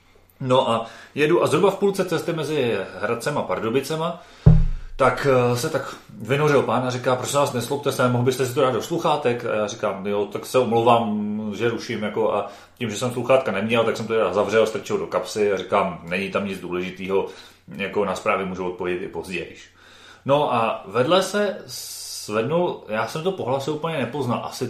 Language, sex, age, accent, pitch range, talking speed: Czech, male, 30-49, native, 105-150 Hz, 185 wpm